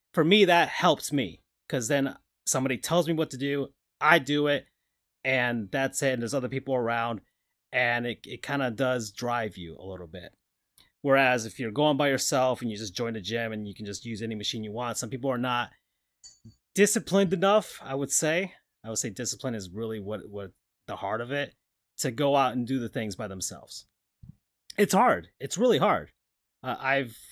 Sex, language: male, English